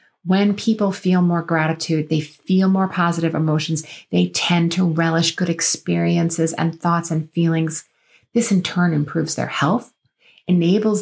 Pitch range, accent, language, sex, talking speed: 160-195 Hz, American, English, female, 145 wpm